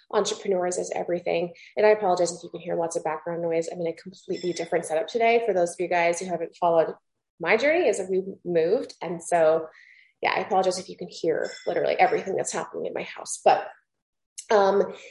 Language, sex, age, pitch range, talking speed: English, female, 20-39, 170-215 Hz, 205 wpm